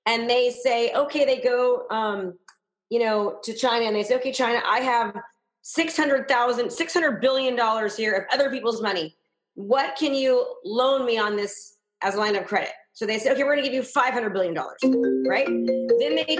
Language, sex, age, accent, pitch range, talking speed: English, female, 30-49, American, 205-265 Hz, 190 wpm